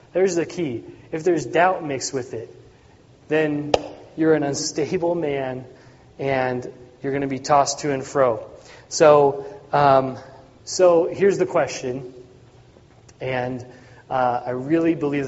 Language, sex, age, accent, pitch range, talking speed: English, male, 30-49, American, 130-165 Hz, 135 wpm